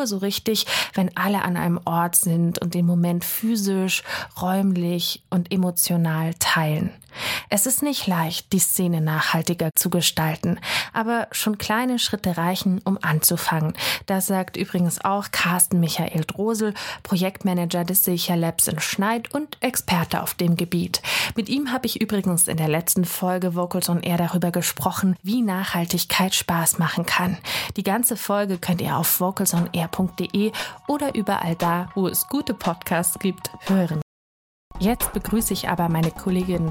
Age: 30-49